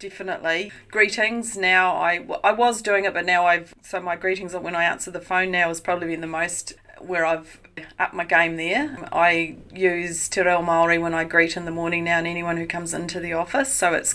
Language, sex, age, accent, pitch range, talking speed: English, female, 40-59, Australian, 175-205 Hz, 220 wpm